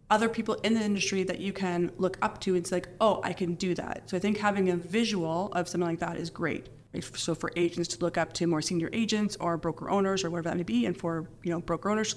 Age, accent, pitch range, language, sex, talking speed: 20-39, American, 170-200 Hz, English, female, 270 wpm